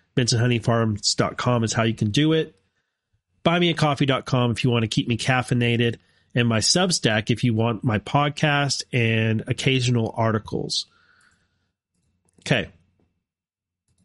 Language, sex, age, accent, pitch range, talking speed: English, male, 30-49, American, 105-145 Hz, 120 wpm